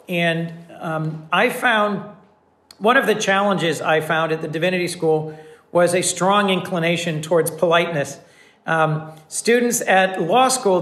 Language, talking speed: English, 140 wpm